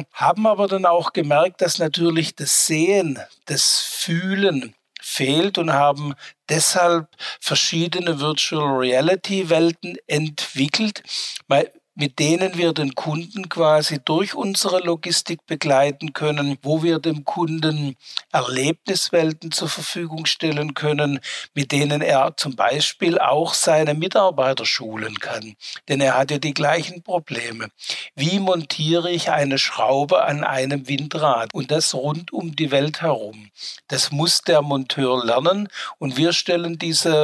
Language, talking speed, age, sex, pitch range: German, 130 wpm, 60-79, male, 140-170 Hz